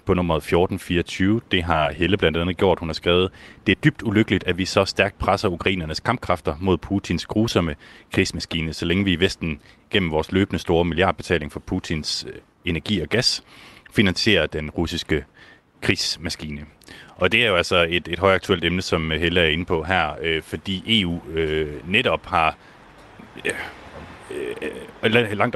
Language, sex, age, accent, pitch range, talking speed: Danish, male, 30-49, native, 80-100 Hz, 155 wpm